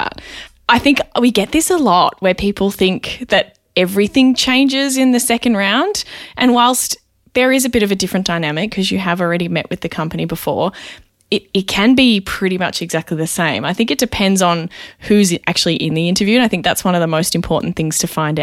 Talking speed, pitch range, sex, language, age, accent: 220 wpm, 170-220 Hz, female, English, 20-39, Australian